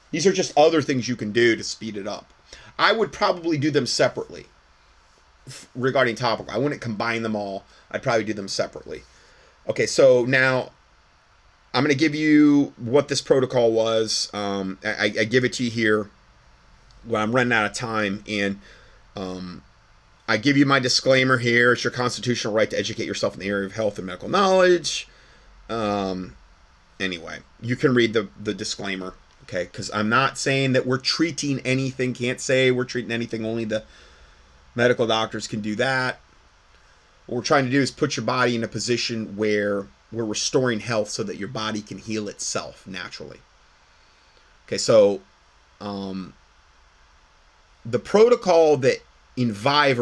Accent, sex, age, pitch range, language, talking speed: American, male, 30-49, 95-130 Hz, English, 165 wpm